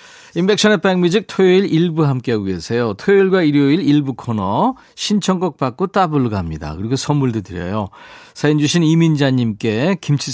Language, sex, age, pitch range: Korean, male, 40-59, 125-175 Hz